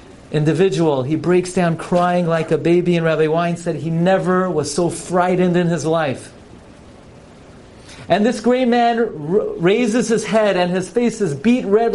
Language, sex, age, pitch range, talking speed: English, male, 40-59, 135-210 Hz, 165 wpm